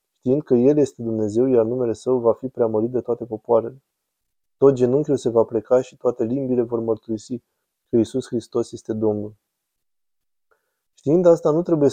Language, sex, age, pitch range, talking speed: Romanian, male, 20-39, 115-135 Hz, 165 wpm